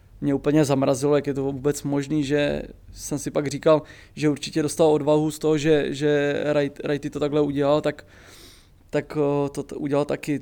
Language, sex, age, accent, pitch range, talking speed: English, male, 20-39, Czech, 140-150 Hz, 175 wpm